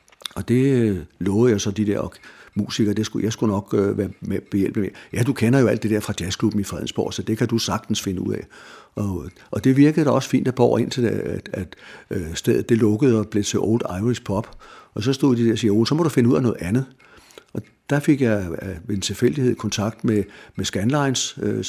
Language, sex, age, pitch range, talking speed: Danish, male, 60-79, 105-120 Hz, 250 wpm